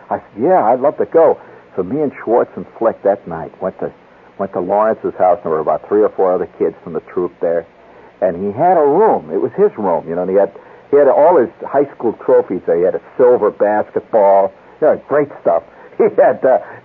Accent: American